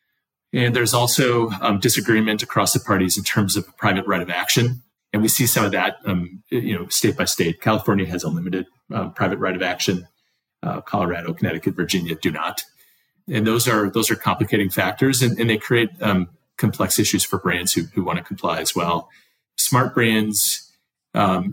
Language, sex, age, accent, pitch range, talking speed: English, male, 30-49, American, 95-110 Hz, 175 wpm